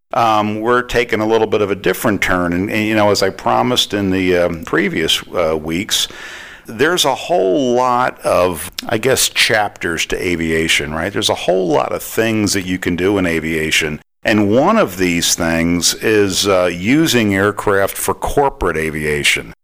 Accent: American